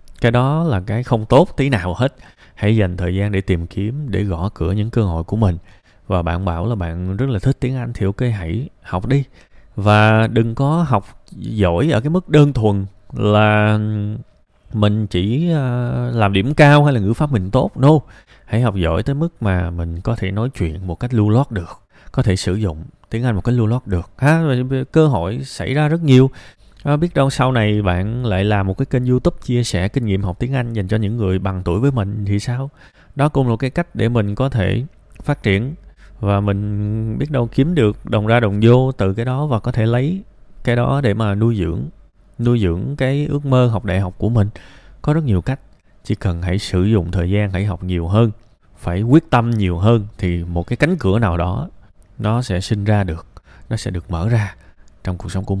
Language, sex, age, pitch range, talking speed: Vietnamese, male, 20-39, 95-125 Hz, 225 wpm